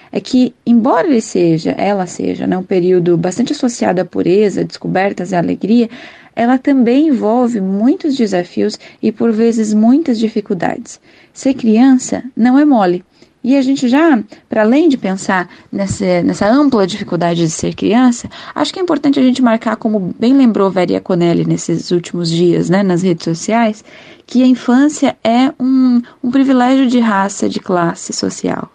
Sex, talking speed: female, 165 wpm